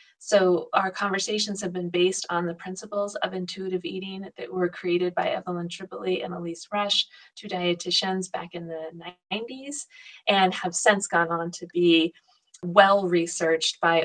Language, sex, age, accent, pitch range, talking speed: English, female, 30-49, American, 170-205 Hz, 155 wpm